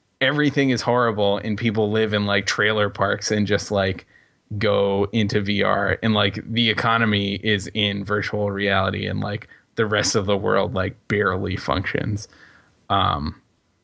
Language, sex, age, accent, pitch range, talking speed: English, male, 20-39, American, 100-125 Hz, 150 wpm